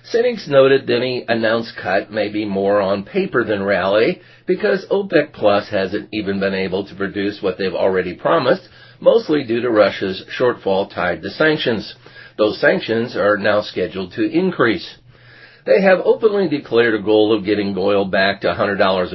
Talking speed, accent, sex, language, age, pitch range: 165 wpm, American, male, English, 50-69, 95-125 Hz